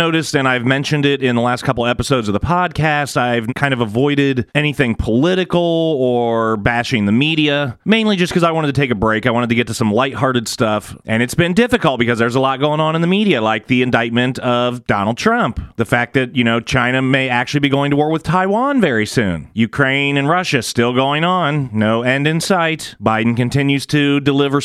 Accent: American